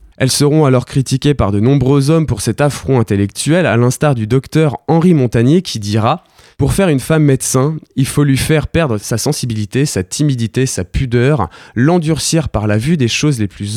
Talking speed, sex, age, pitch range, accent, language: 190 wpm, male, 20-39, 110-145 Hz, French, French